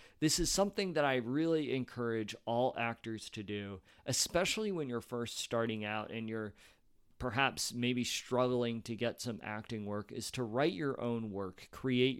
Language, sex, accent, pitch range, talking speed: English, male, American, 115-140 Hz, 165 wpm